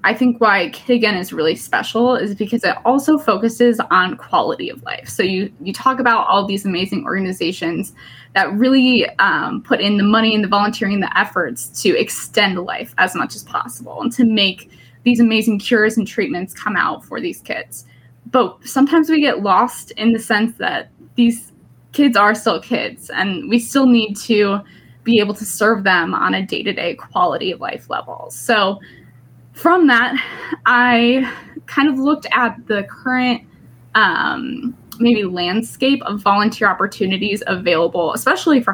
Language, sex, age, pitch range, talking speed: English, female, 20-39, 200-250 Hz, 170 wpm